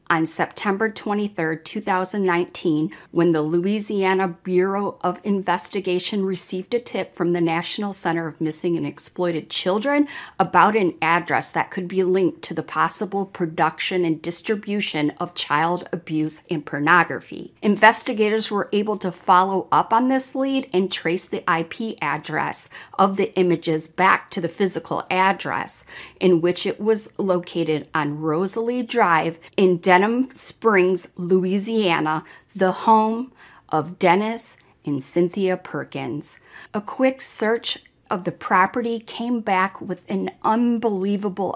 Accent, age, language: American, 40-59, English